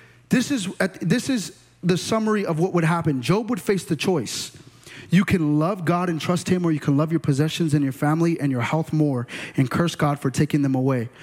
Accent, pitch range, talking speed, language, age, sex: American, 125-175 Hz, 225 wpm, English, 30-49, male